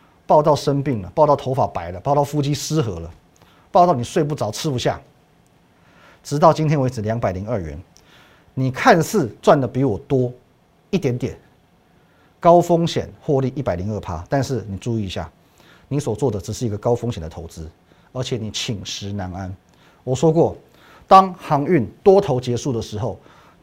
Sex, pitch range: male, 110-170 Hz